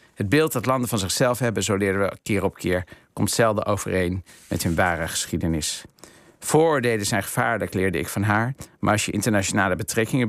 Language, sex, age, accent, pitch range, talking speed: Dutch, male, 50-69, Dutch, 95-110 Hz, 185 wpm